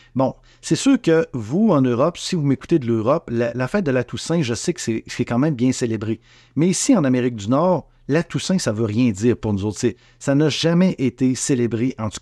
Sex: male